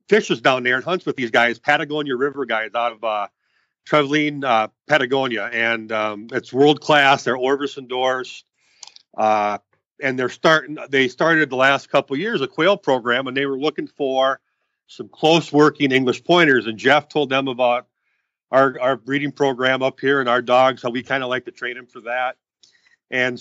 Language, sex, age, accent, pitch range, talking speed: English, male, 40-59, American, 120-140 Hz, 185 wpm